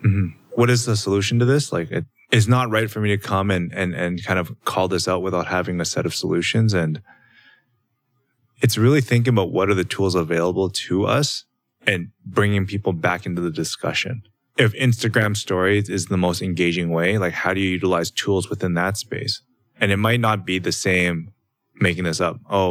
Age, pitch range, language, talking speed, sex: 20-39, 90-110 Hz, English, 200 wpm, male